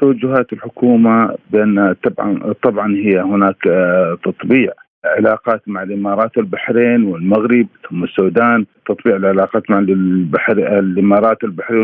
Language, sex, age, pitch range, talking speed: Arabic, male, 50-69, 110-140 Hz, 100 wpm